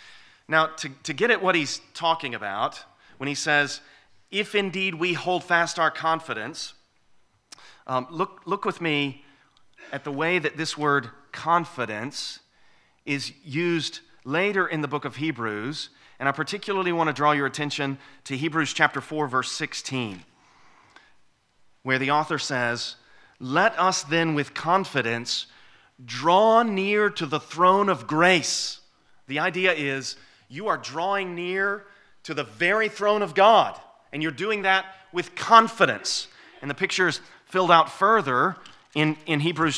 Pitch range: 140-185 Hz